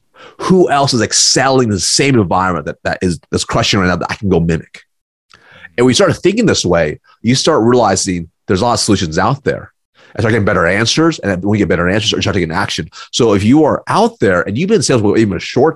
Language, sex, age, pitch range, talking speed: English, male, 30-49, 90-125 Hz, 255 wpm